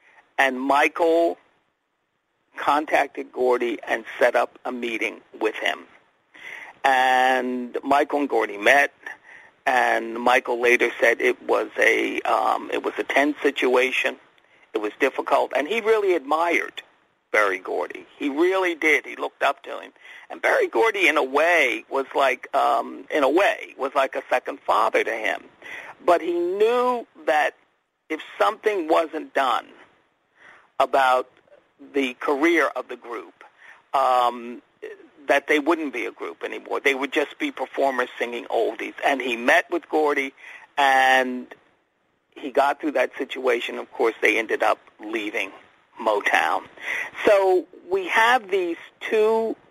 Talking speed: 140 wpm